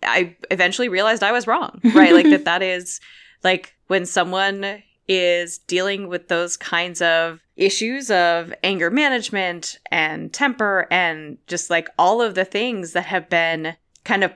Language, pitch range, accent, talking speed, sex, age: English, 165-195 Hz, American, 160 wpm, female, 20-39